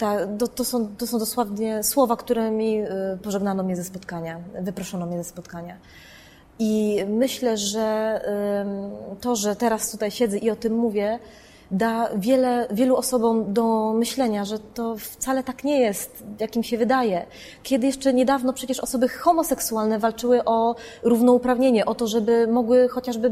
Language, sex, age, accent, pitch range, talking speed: Polish, female, 20-39, native, 205-245 Hz, 150 wpm